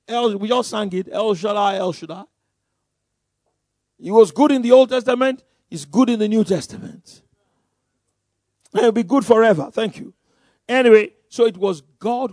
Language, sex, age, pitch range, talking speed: English, male, 50-69, 140-220 Hz, 160 wpm